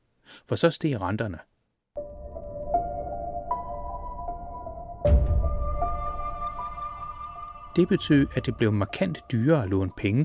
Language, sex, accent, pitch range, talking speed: Danish, male, native, 105-145 Hz, 80 wpm